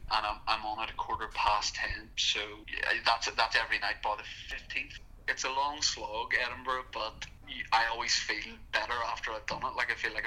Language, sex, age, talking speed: English, male, 20-39, 200 wpm